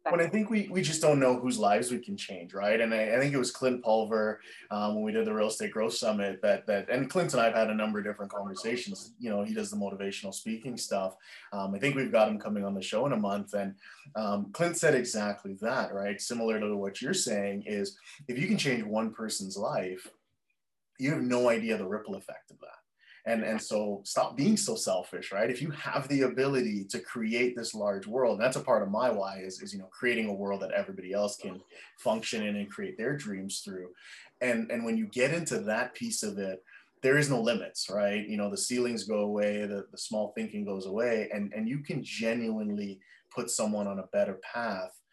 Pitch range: 100-125 Hz